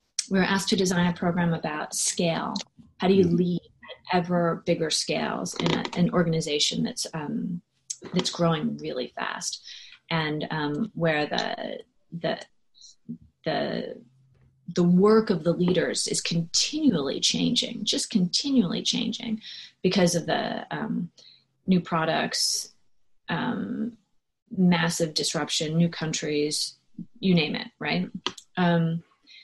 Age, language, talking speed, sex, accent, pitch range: 30-49, English, 120 wpm, female, American, 175-220 Hz